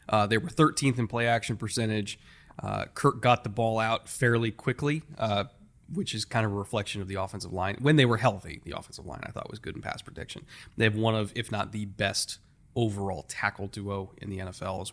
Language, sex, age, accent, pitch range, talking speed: English, male, 20-39, American, 100-125 Hz, 220 wpm